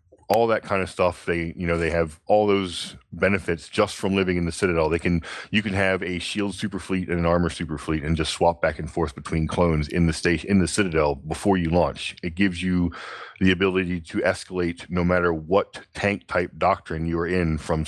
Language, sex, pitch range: English, male, 85-100 Hz